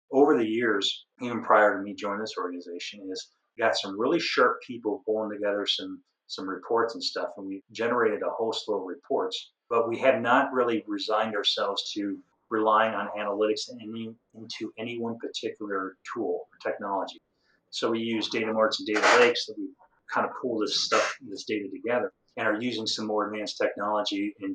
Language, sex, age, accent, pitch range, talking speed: English, male, 30-49, American, 100-125 Hz, 190 wpm